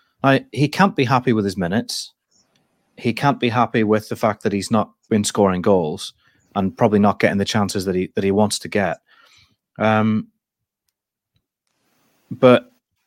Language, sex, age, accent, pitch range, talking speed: English, male, 30-49, British, 100-115 Hz, 165 wpm